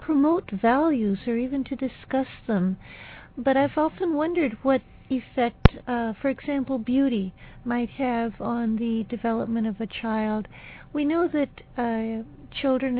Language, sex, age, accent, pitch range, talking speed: English, female, 60-79, American, 215-255 Hz, 140 wpm